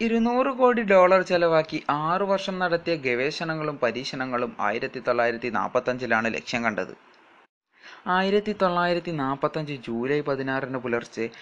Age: 20-39